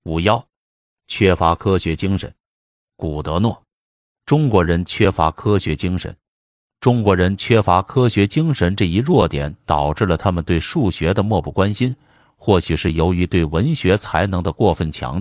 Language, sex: Chinese, male